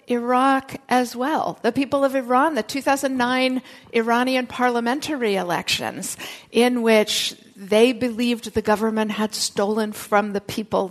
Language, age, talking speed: English, 50-69, 125 wpm